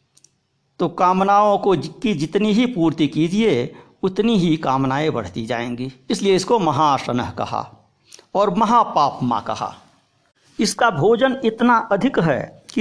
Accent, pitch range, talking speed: native, 130-220 Hz, 125 wpm